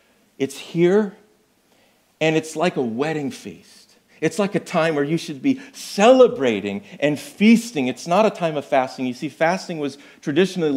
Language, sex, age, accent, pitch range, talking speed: English, male, 40-59, American, 140-205 Hz, 165 wpm